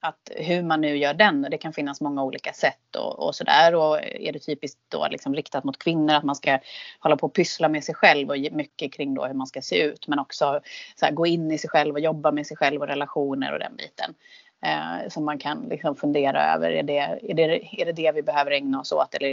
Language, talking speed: English, 260 wpm